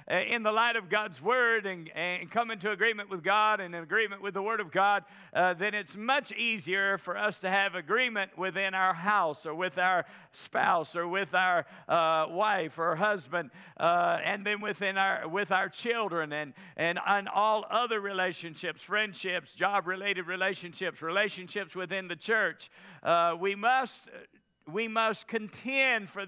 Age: 50-69